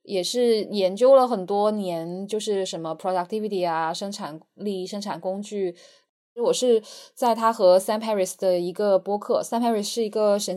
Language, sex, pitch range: Chinese, female, 185-225 Hz